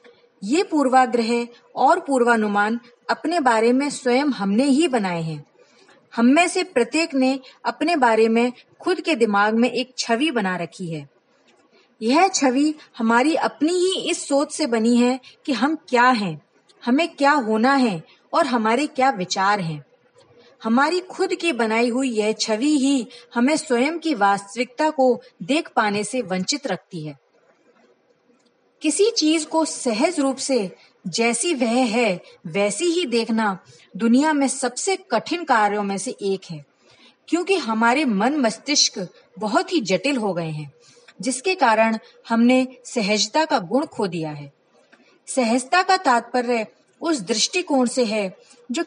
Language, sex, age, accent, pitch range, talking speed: Hindi, female, 30-49, native, 215-300 Hz, 145 wpm